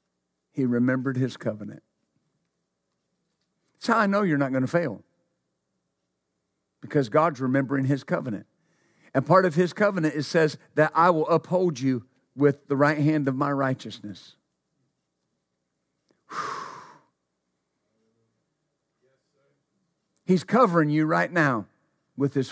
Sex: male